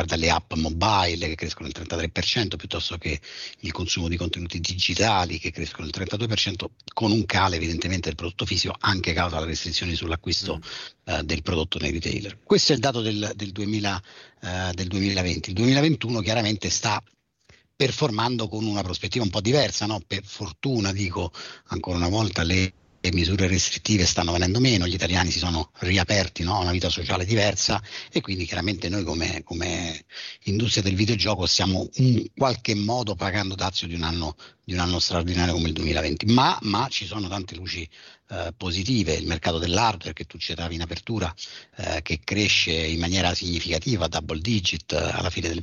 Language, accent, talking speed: Italian, native, 170 wpm